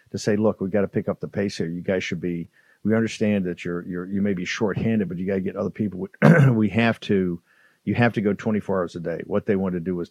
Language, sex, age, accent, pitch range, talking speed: English, male, 50-69, American, 90-105 Hz, 290 wpm